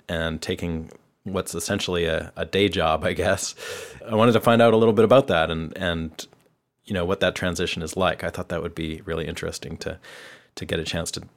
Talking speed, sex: 220 wpm, male